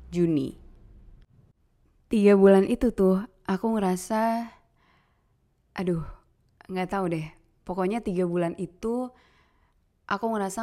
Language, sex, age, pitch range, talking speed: Indonesian, female, 20-39, 170-200 Hz, 95 wpm